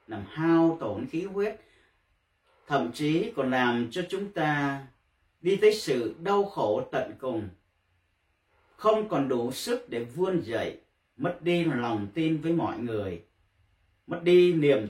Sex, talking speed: male, 145 wpm